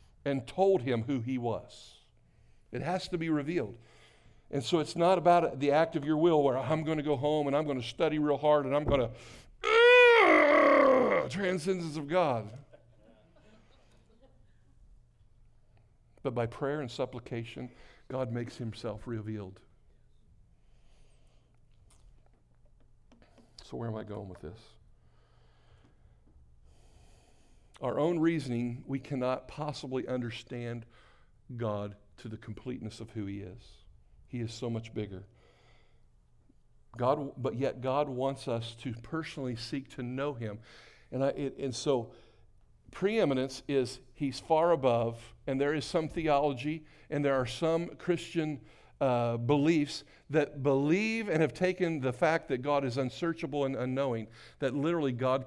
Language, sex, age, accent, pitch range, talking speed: English, male, 60-79, American, 115-150 Hz, 140 wpm